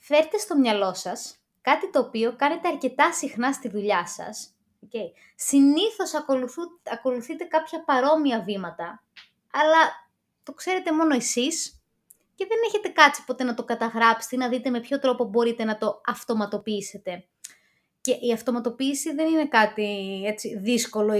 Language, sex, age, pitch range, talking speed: Greek, female, 20-39, 210-295 Hz, 140 wpm